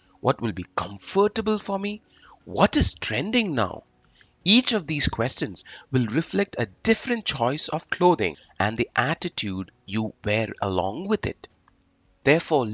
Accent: Indian